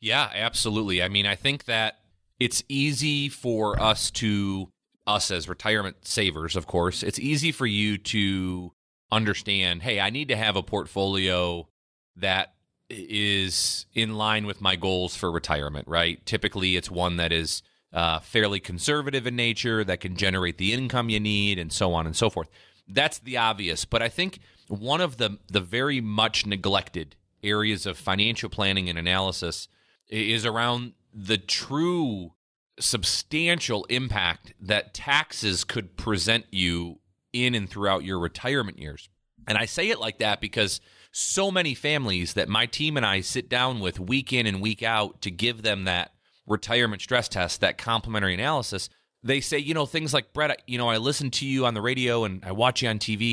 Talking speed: 175 wpm